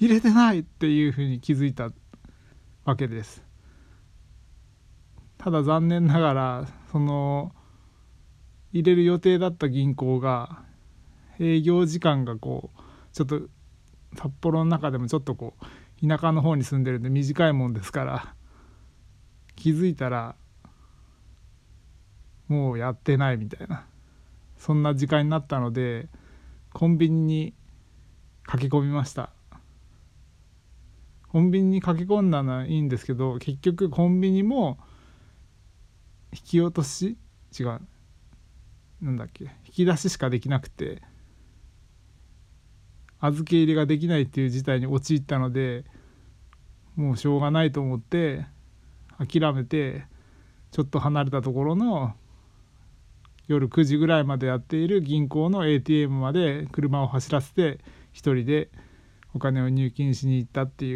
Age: 20-39